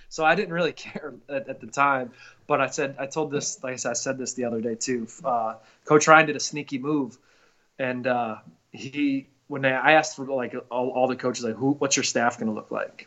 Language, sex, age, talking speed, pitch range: English, male, 20-39, 245 wpm, 115-155 Hz